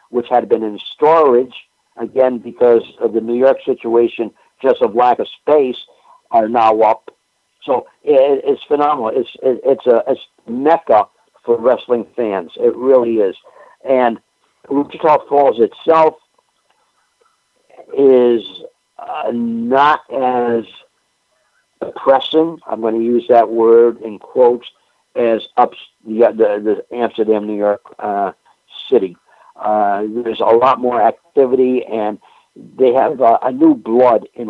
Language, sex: English, male